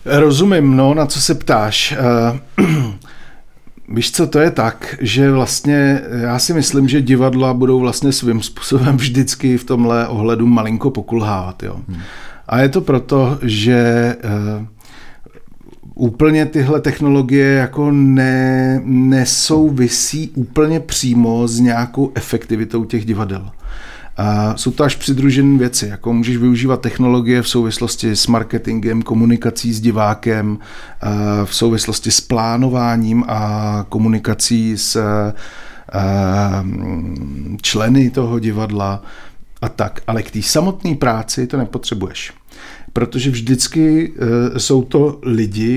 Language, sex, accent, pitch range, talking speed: Czech, male, native, 110-135 Hz, 110 wpm